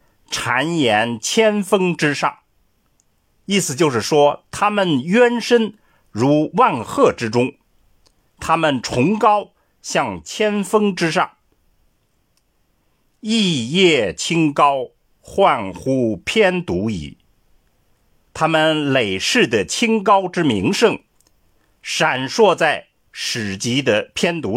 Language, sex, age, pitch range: Chinese, male, 50-69, 145-225 Hz